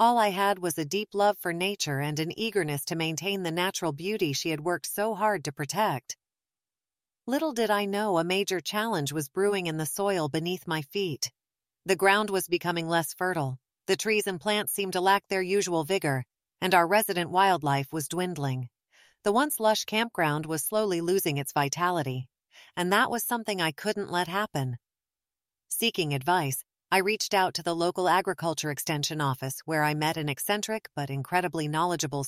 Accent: American